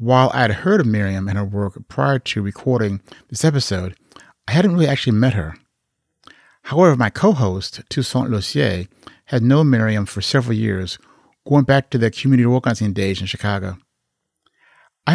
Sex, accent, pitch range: male, American, 100-130 Hz